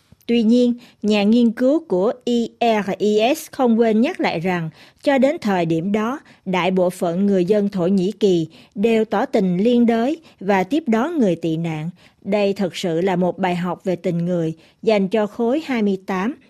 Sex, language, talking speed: female, Vietnamese, 180 wpm